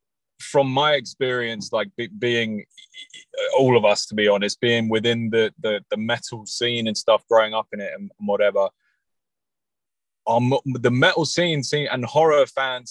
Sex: male